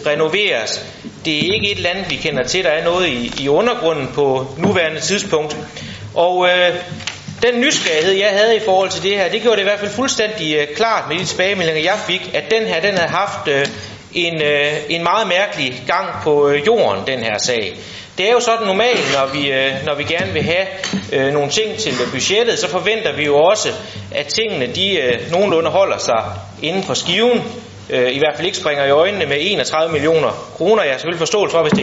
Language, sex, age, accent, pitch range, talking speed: Danish, male, 30-49, native, 145-205 Hz, 210 wpm